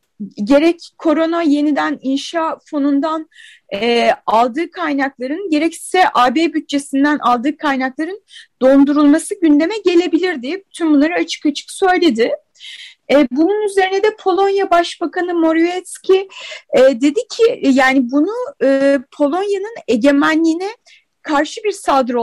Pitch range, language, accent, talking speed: 275-345 Hz, Turkish, native, 110 wpm